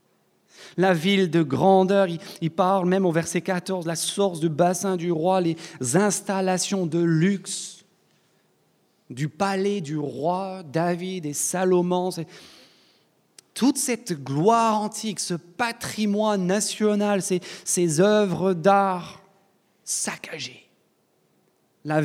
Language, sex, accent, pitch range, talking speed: French, male, French, 140-185 Hz, 110 wpm